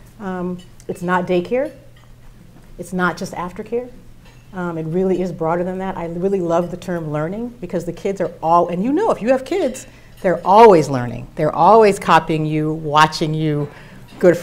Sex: female